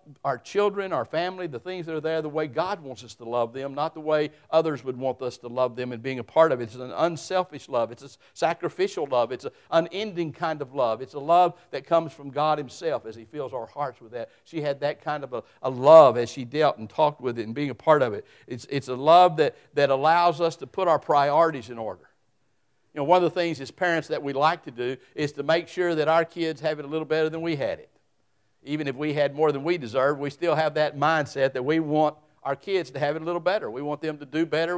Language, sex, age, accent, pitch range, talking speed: English, male, 60-79, American, 140-170 Hz, 270 wpm